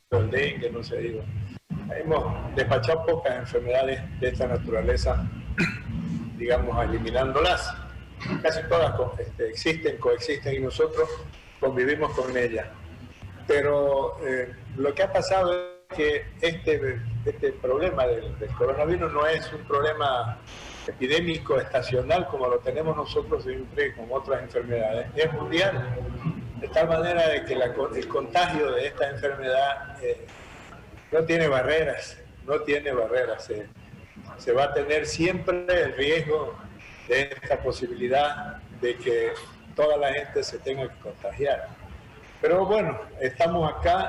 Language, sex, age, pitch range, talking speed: Spanish, male, 50-69, 120-190 Hz, 125 wpm